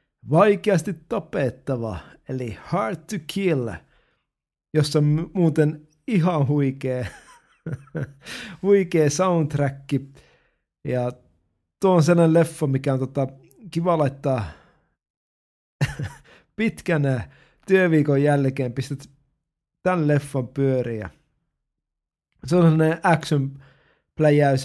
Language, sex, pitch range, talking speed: Finnish, male, 130-165 Hz, 80 wpm